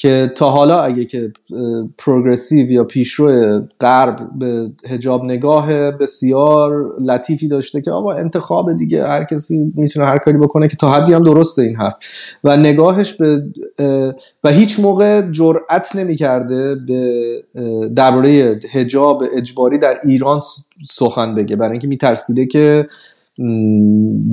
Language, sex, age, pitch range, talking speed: Persian, male, 30-49, 125-155 Hz, 130 wpm